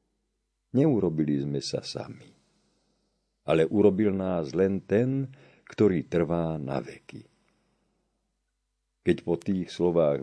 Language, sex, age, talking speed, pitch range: Slovak, male, 50-69, 100 wpm, 70-95 Hz